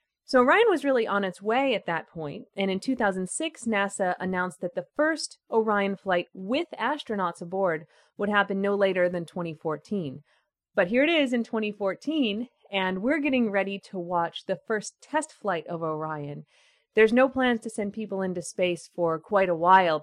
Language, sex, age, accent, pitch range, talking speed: English, female, 30-49, American, 175-220 Hz, 175 wpm